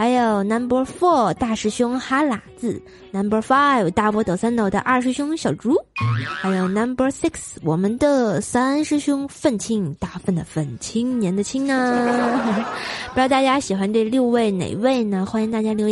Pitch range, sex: 195-245 Hz, female